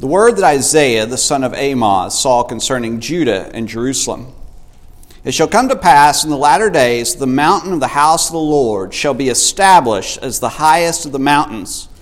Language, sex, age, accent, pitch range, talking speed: English, male, 50-69, American, 115-160 Hz, 195 wpm